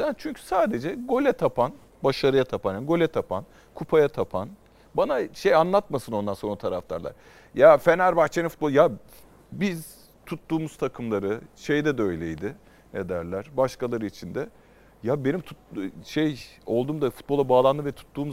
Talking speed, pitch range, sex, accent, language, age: 135 wpm, 135-185 Hz, male, native, Turkish, 40-59